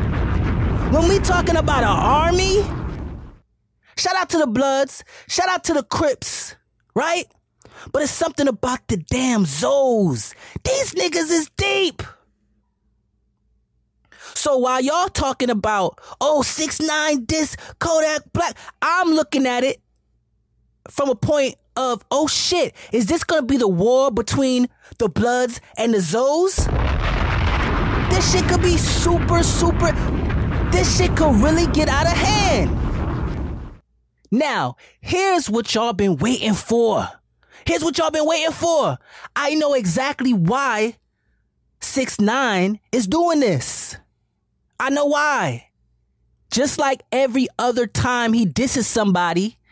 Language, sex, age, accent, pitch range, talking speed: English, male, 30-49, American, 215-295 Hz, 130 wpm